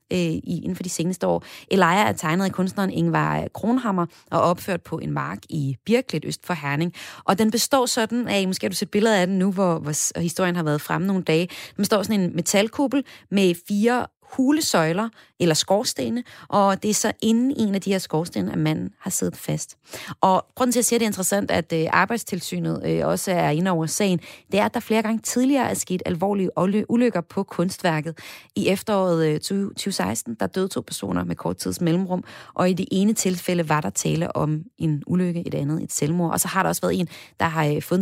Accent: native